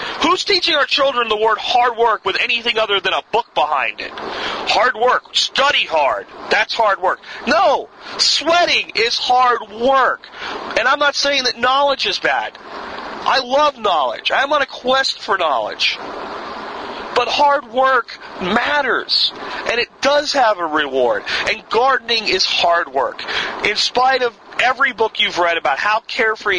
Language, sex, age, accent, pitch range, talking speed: English, male, 40-59, American, 180-265 Hz, 160 wpm